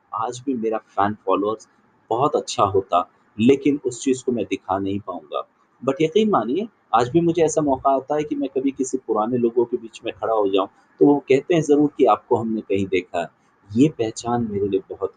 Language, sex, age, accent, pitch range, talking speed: Hindi, male, 30-49, native, 125-180 Hz, 215 wpm